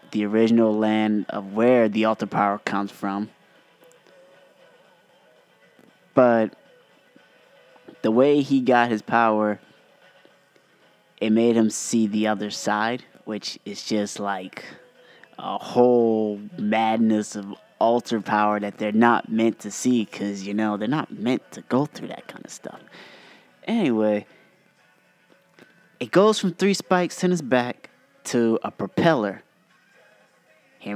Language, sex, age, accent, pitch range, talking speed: English, male, 20-39, American, 105-125 Hz, 130 wpm